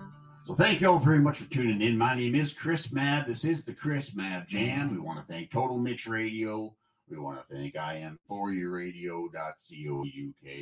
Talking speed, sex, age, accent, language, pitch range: 190 wpm, male, 60-79, American, English, 90-120 Hz